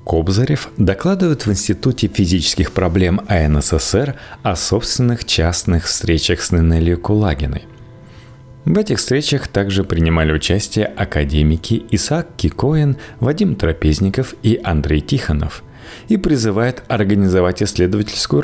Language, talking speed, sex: Russian, 105 wpm, male